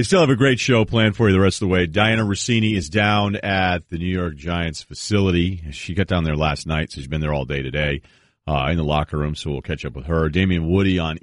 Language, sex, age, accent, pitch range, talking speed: English, male, 40-59, American, 80-105 Hz, 275 wpm